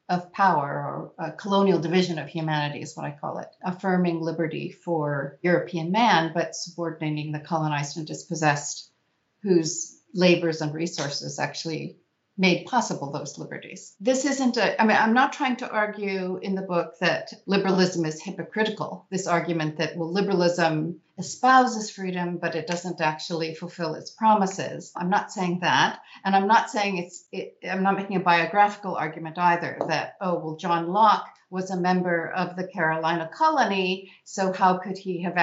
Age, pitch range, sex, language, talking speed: 50-69, 165-195 Hz, female, English, 165 wpm